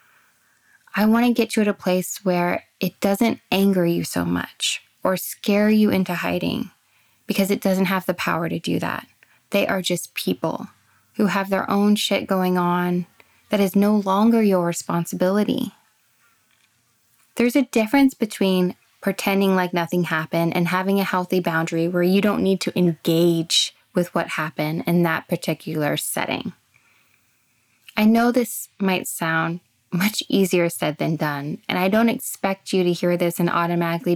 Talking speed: 160 wpm